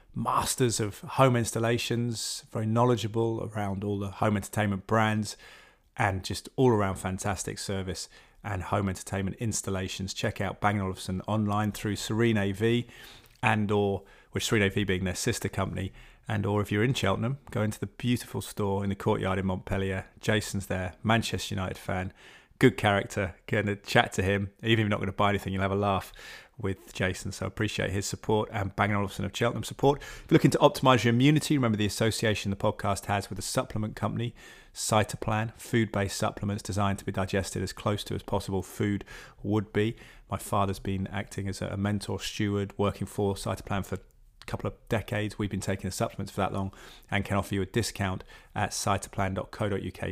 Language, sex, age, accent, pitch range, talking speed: English, male, 30-49, British, 95-110 Hz, 185 wpm